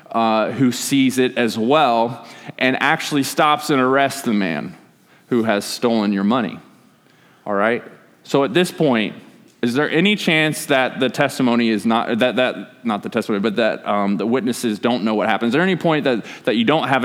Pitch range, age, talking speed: 115-155 Hz, 20-39, 195 wpm